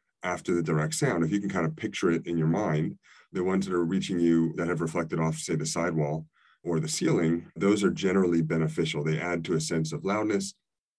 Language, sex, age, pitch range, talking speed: English, male, 30-49, 80-100 Hz, 225 wpm